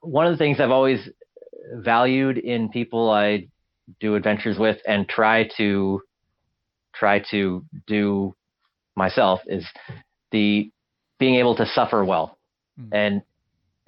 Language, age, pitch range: English, 30-49, 100-120 Hz